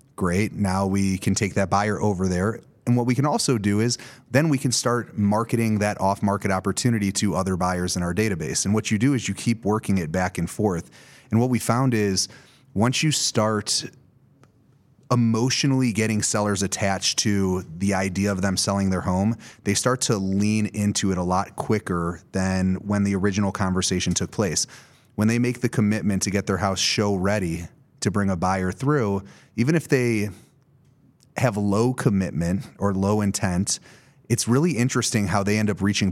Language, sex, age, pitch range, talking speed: English, male, 30-49, 95-120 Hz, 185 wpm